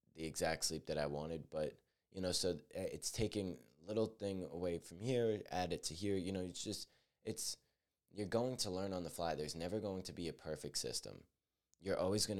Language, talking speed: English, 220 wpm